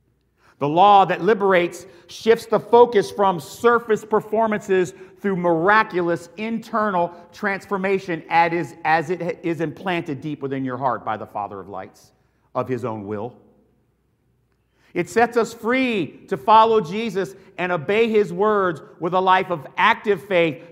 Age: 50-69